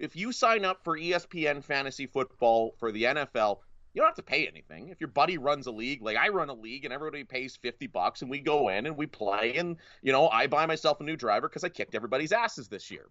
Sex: male